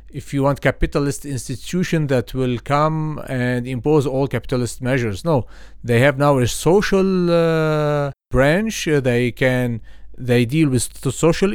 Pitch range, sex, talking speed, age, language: 120-155 Hz, male, 140 wpm, 40-59, English